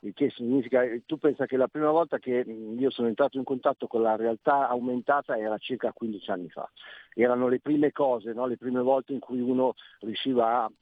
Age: 50-69